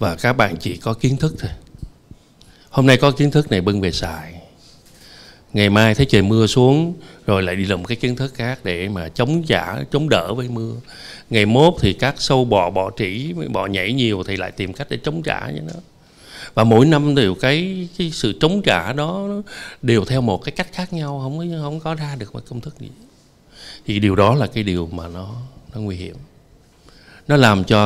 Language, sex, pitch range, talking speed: Vietnamese, male, 100-140 Hz, 215 wpm